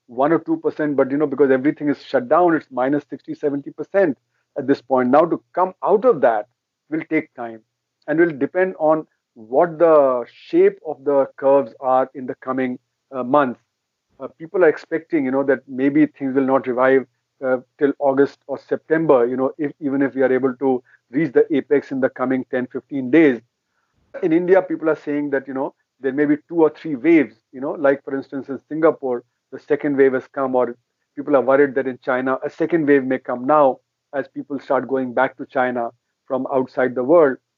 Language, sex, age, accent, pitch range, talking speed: English, male, 50-69, Indian, 130-155 Hz, 205 wpm